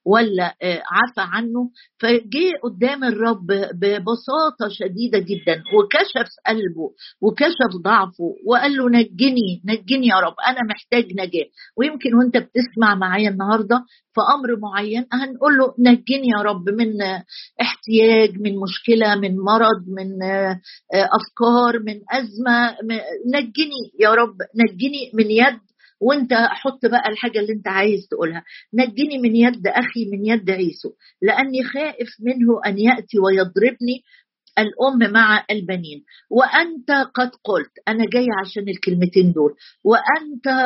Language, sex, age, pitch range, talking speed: Arabic, female, 50-69, 200-250 Hz, 125 wpm